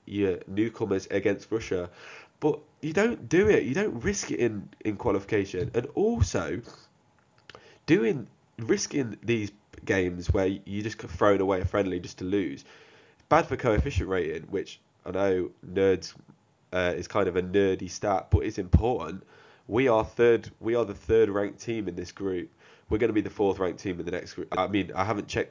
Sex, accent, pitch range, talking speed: male, British, 95-115 Hz, 185 wpm